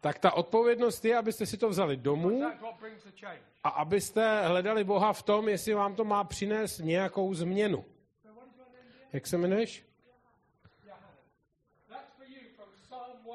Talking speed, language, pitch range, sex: 110 wpm, Czech, 160-250 Hz, male